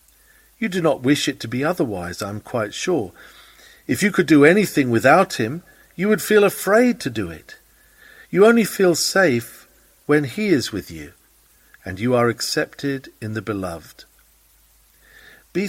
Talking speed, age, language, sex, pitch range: 165 wpm, 50-69, English, male, 115-170 Hz